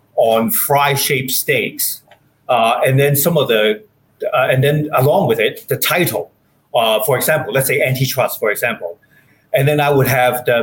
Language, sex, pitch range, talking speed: English, male, 130-165 Hz, 175 wpm